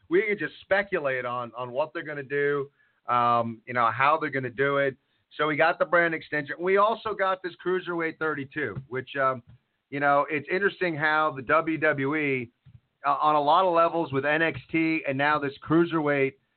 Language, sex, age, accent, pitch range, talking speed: English, male, 40-59, American, 135-175 Hz, 190 wpm